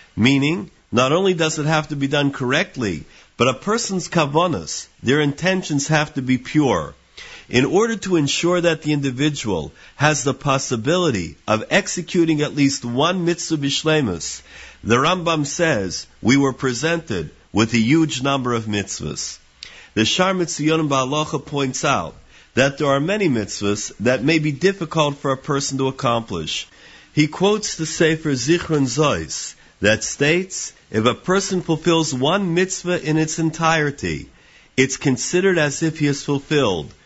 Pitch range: 115-160 Hz